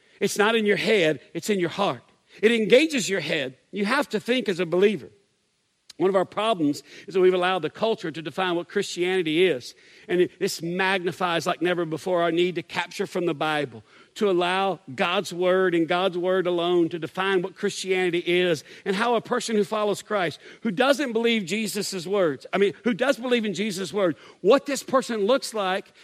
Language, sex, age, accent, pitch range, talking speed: English, male, 50-69, American, 185-250 Hz, 200 wpm